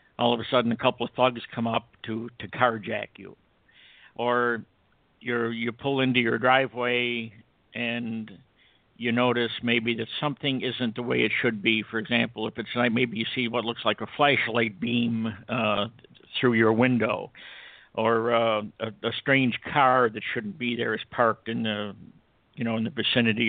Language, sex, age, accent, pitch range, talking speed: English, male, 60-79, American, 115-130 Hz, 180 wpm